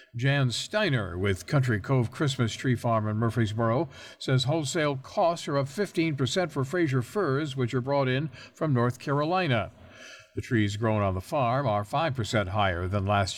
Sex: male